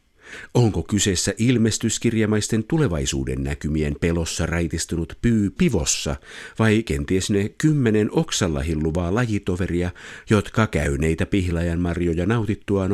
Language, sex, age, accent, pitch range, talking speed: Finnish, male, 50-69, native, 85-120 Hz, 95 wpm